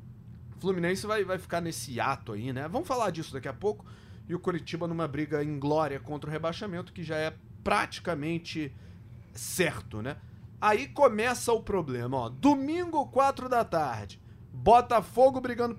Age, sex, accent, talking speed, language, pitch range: 30-49, male, Brazilian, 155 wpm, Portuguese, 130-200 Hz